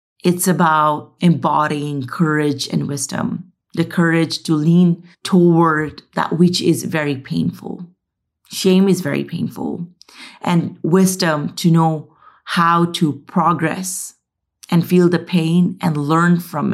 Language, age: English, 30-49